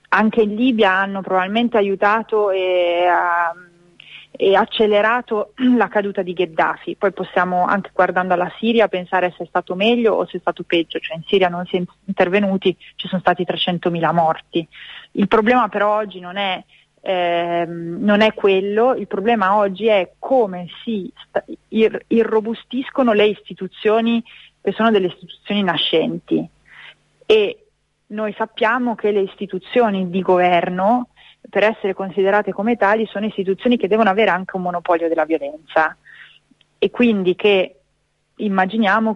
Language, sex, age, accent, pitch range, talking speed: Italian, female, 30-49, native, 180-220 Hz, 145 wpm